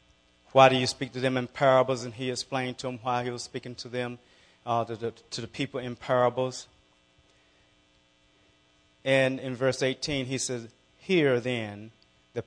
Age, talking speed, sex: 30-49, 170 wpm, male